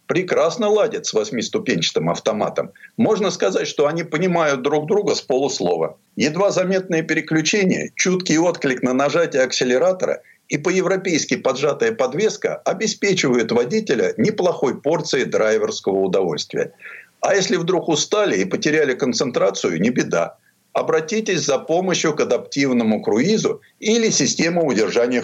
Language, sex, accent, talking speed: Russian, male, native, 120 wpm